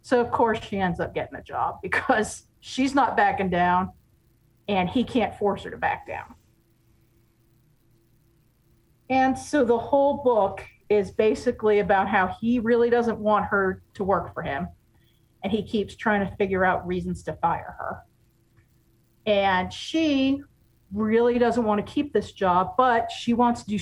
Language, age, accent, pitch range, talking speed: English, 40-59, American, 170-230 Hz, 165 wpm